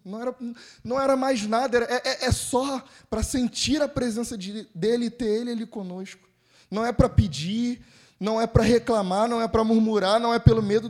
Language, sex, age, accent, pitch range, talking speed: Portuguese, male, 10-29, Brazilian, 145-230 Hz, 195 wpm